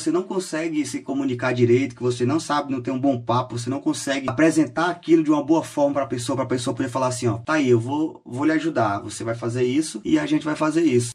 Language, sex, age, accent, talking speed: Portuguese, male, 20-39, Brazilian, 275 wpm